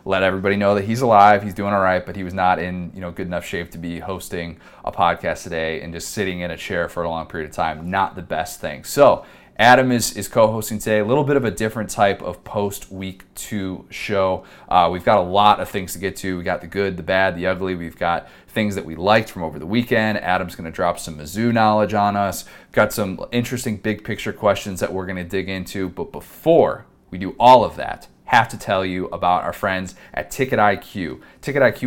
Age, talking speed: 30-49, 240 wpm